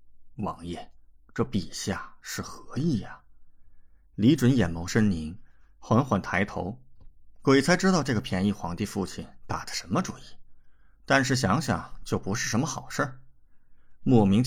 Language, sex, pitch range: Chinese, male, 85-115 Hz